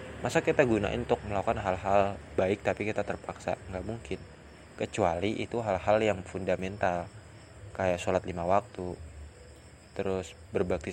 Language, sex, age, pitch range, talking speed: Indonesian, male, 20-39, 90-105 Hz, 125 wpm